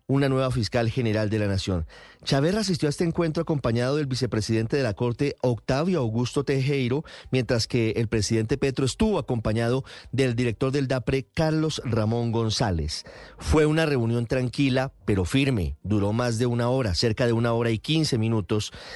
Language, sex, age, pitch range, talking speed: Spanish, male, 40-59, 115-145 Hz, 170 wpm